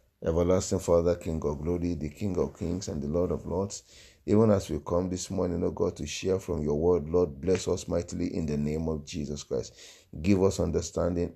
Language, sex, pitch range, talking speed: English, male, 80-95 Hz, 215 wpm